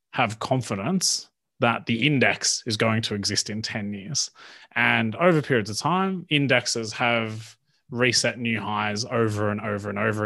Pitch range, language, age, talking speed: 110-135 Hz, English, 30-49, 160 wpm